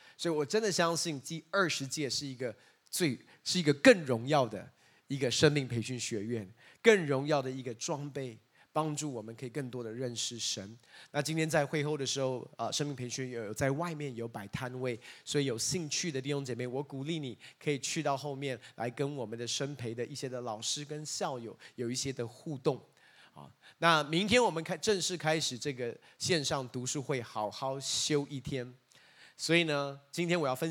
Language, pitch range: Chinese, 120-150 Hz